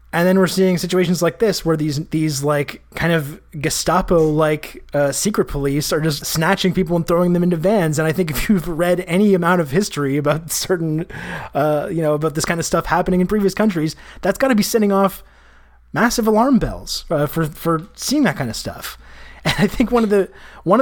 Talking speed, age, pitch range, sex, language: 215 wpm, 20-39, 150-185 Hz, male, English